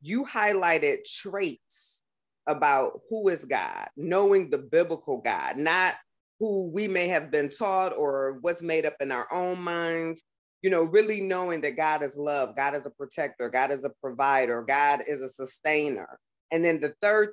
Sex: female